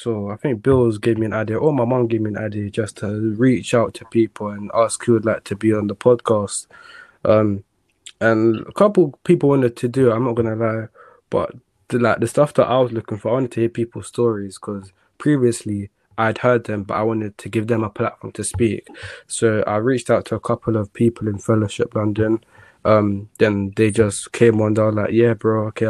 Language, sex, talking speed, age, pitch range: English, male, 225 wpm, 20-39, 105-120 Hz